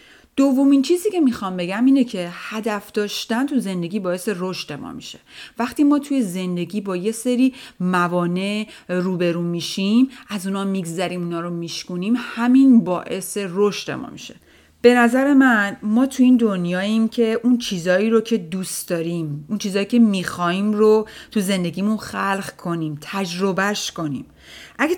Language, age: Persian, 30-49